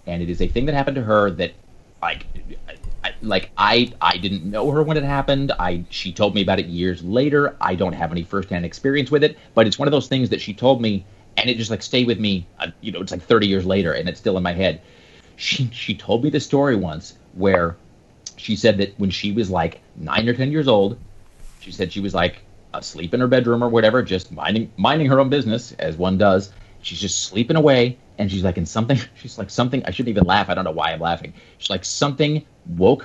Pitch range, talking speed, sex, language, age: 100-135 Hz, 245 wpm, male, English, 30-49